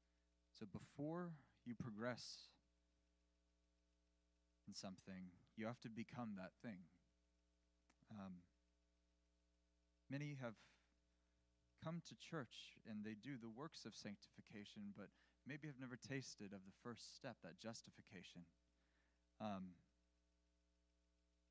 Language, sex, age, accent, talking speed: English, male, 20-39, American, 100 wpm